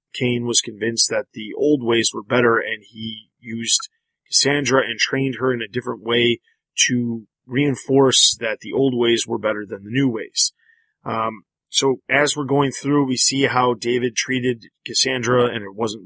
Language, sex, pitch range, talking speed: English, male, 110-130 Hz, 175 wpm